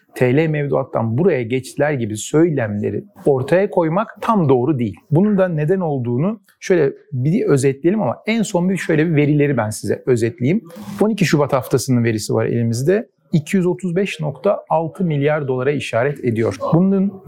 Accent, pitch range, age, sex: native, 120-175 Hz, 40-59, male